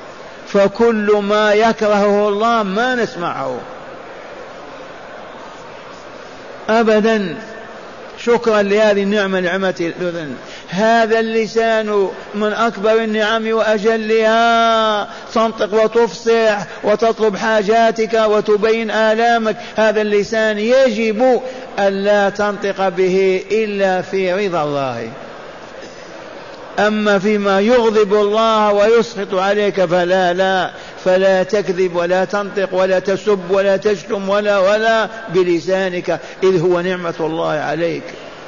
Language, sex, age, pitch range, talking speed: Arabic, male, 50-69, 190-225 Hz, 90 wpm